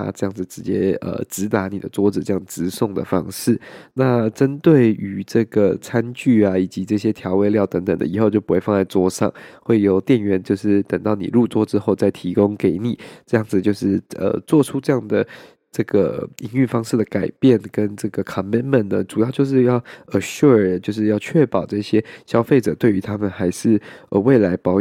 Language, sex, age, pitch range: Chinese, male, 20-39, 100-120 Hz